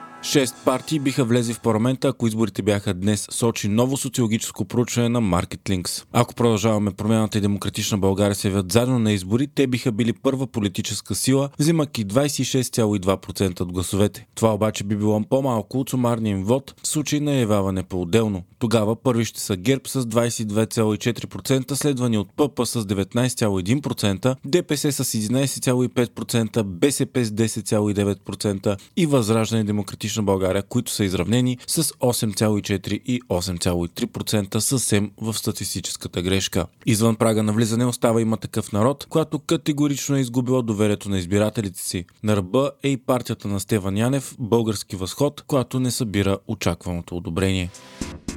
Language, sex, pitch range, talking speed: Bulgarian, male, 105-130 Hz, 140 wpm